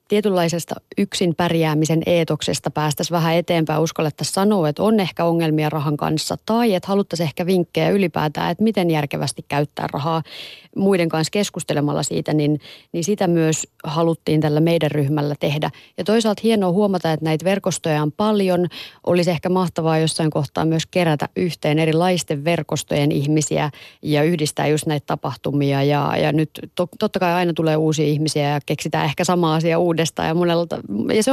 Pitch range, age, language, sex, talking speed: 155-185 Hz, 30-49, Finnish, female, 155 wpm